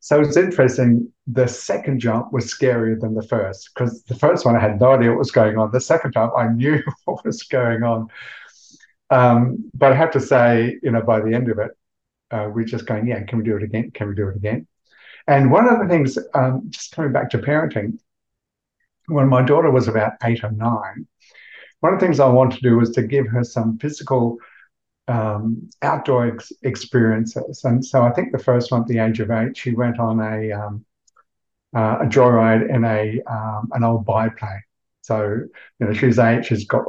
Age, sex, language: 50-69, male, English